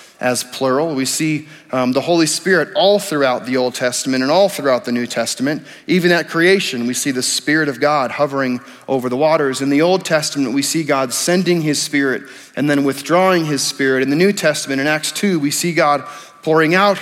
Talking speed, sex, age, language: 210 wpm, male, 30-49, English